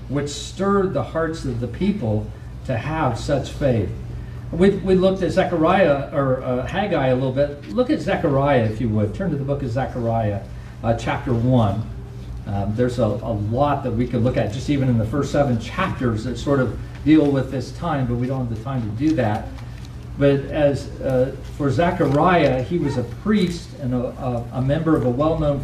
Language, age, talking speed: English, 50-69, 205 wpm